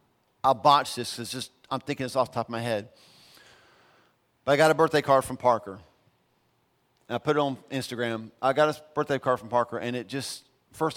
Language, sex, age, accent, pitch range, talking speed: English, male, 40-59, American, 120-165 Hz, 210 wpm